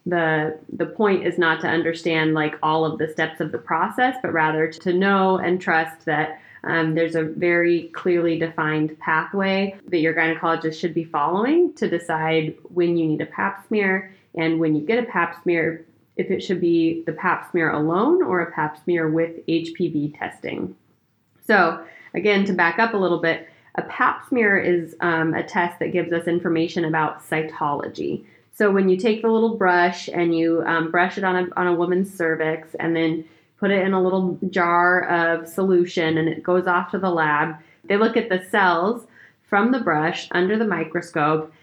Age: 20-39